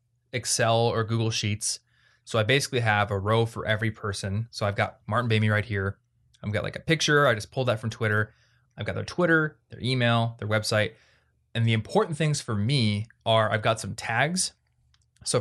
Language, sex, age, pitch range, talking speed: English, male, 20-39, 105-120 Hz, 200 wpm